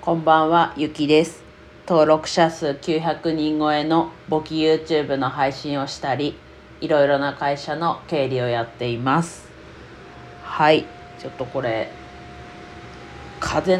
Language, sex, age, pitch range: Japanese, female, 40-59, 125-160 Hz